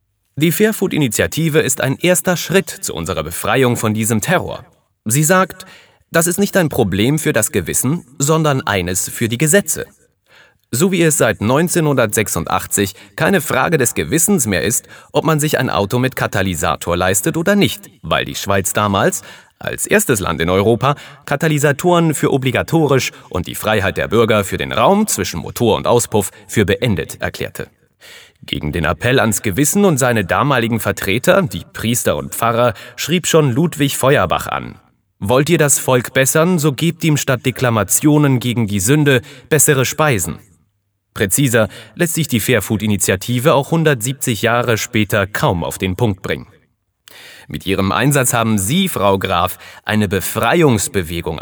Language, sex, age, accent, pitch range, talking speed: German, male, 30-49, German, 105-150 Hz, 155 wpm